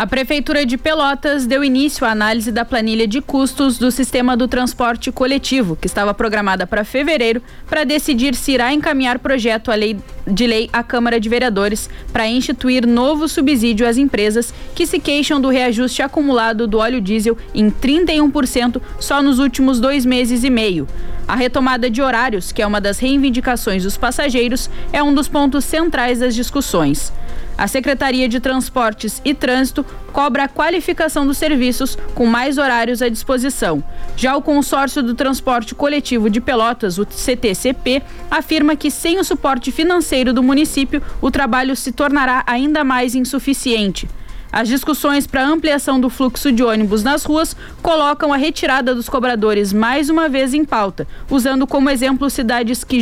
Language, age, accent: Portuguese, 10-29, Brazilian